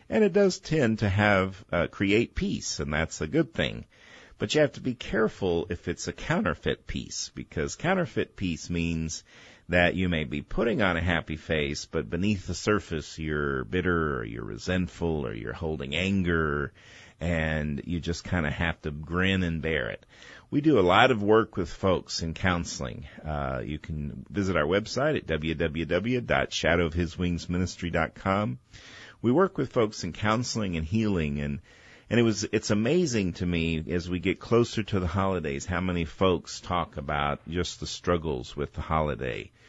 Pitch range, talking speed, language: 80-100 Hz, 170 wpm, English